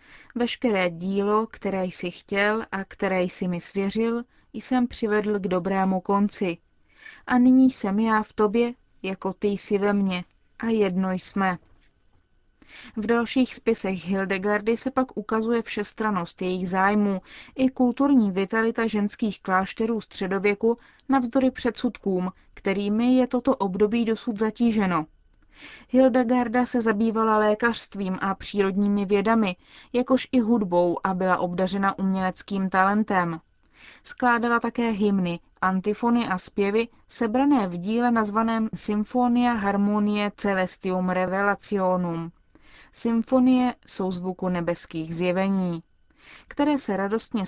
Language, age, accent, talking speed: Czech, 20-39, native, 115 wpm